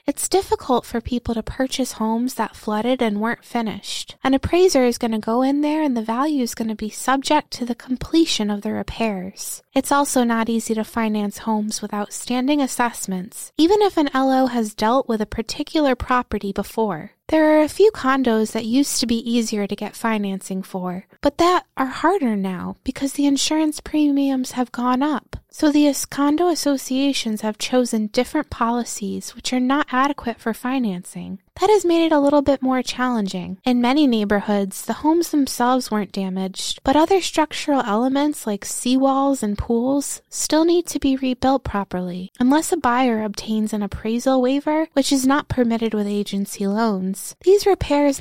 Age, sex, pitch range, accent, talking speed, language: 20-39, female, 215-275 Hz, American, 175 wpm, English